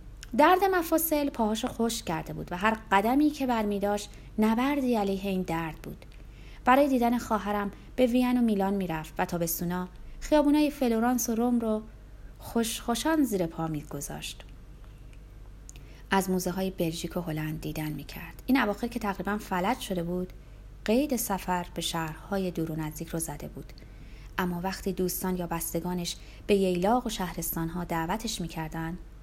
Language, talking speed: Persian, 155 wpm